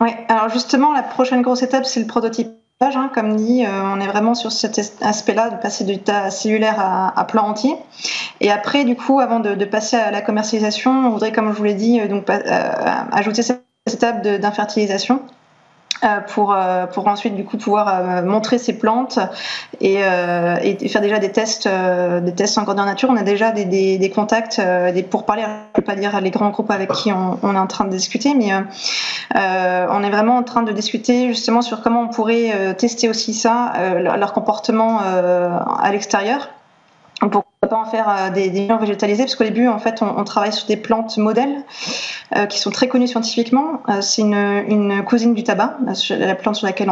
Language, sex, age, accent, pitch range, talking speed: French, female, 20-39, French, 205-235 Hz, 200 wpm